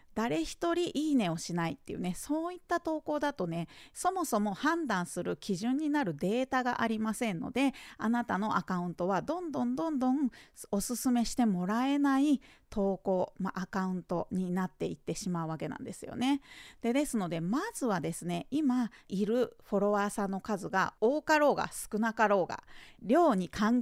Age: 40-59